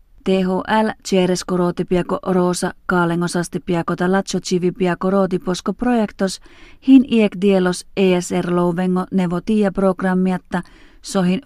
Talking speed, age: 75 wpm, 40-59